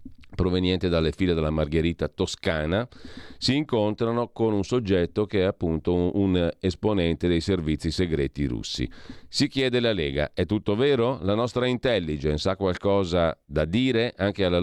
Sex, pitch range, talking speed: male, 85-105 Hz, 150 wpm